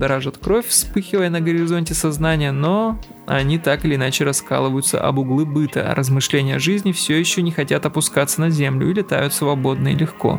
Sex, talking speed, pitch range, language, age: male, 180 wpm, 140-180 Hz, Russian, 20-39